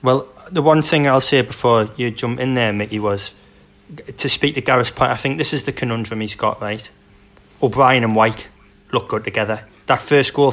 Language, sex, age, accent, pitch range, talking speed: English, male, 20-39, British, 105-125 Hz, 205 wpm